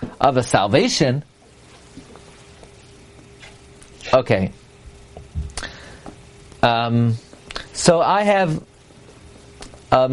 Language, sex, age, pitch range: English, male, 40-59, 135-200 Hz